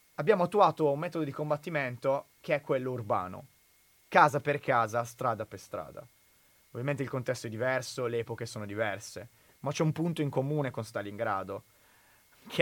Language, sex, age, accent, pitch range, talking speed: Italian, male, 30-49, native, 115-140 Hz, 160 wpm